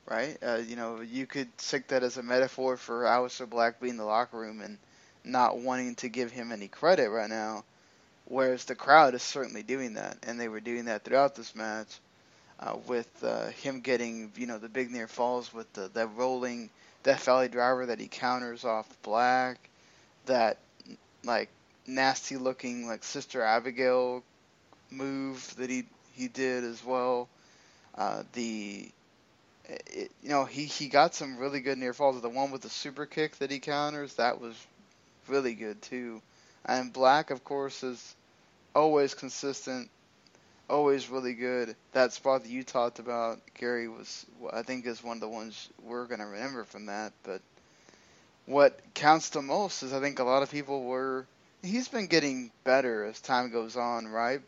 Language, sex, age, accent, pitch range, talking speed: English, male, 10-29, American, 115-135 Hz, 175 wpm